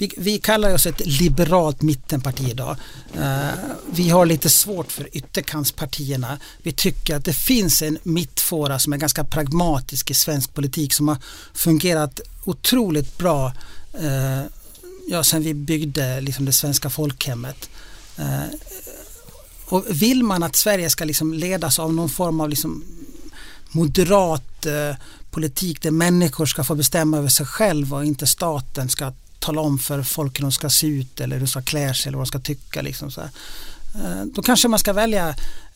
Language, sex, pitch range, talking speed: English, male, 140-175 Hz, 150 wpm